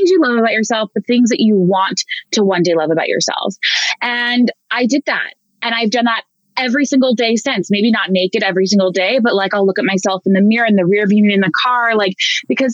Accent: American